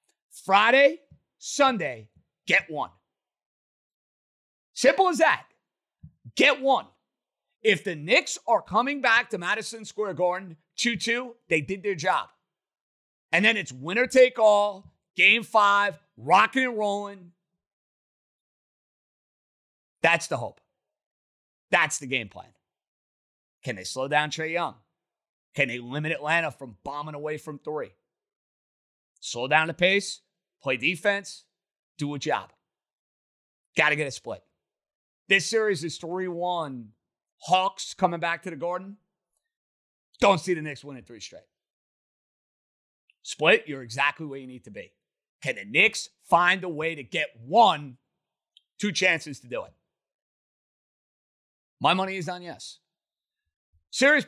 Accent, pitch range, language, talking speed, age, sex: American, 150-205 Hz, English, 130 wpm, 30-49, male